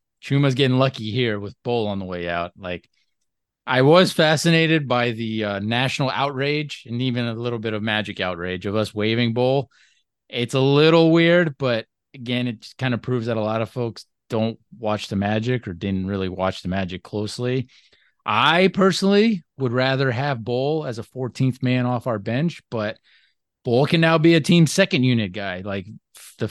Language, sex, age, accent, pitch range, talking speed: English, male, 30-49, American, 105-140 Hz, 190 wpm